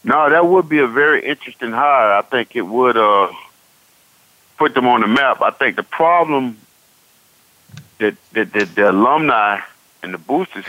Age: 50-69